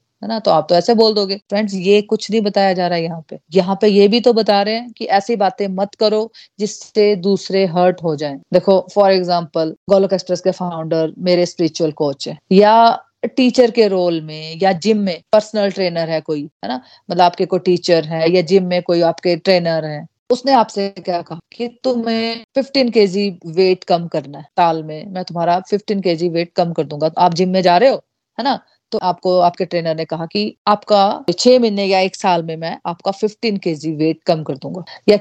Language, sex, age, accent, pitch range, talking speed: Hindi, female, 30-49, native, 170-215 Hz, 215 wpm